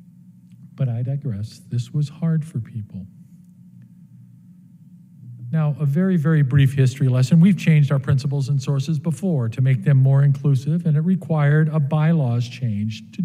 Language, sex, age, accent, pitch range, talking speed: English, male, 50-69, American, 120-170 Hz, 155 wpm